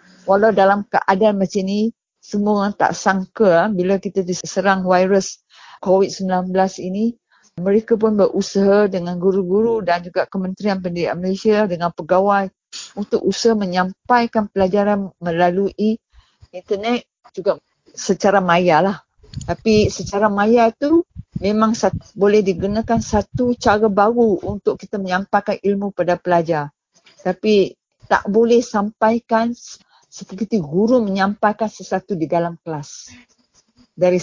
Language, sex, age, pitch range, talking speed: English, female, 50-69, 185-215 Hz, 115 wpm